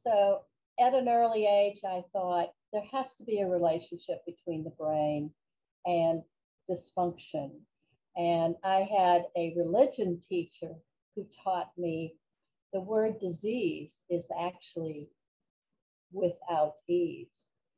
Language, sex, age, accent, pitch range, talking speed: English, female, 60-79, American, 170-205 Hz, 115 wpm